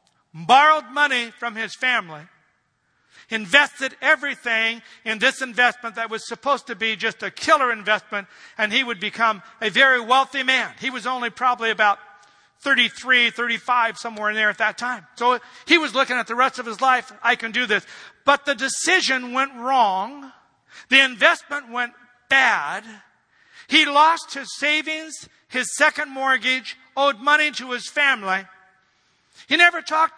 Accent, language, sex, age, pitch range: American, Japanese, male, 50-69, 220-270 Hz